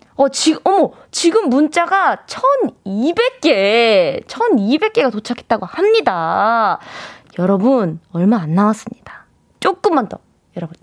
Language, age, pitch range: Korean, 20-39, 220-335 Hz